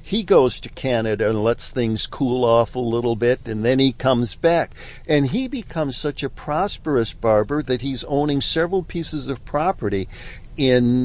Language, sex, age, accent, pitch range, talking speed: English, male, 60-79, American, 115-150 Hz, 175 wpm